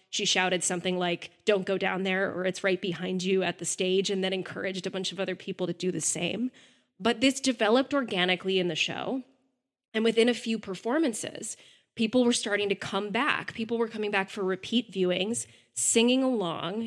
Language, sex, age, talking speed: English, female, 20-39, 195 wpm